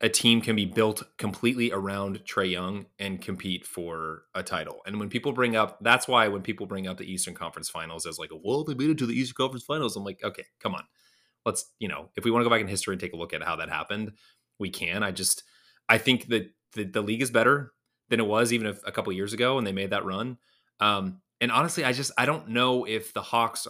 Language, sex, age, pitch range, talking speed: English, male, 30-49, 100-120 Hz, 260 wpm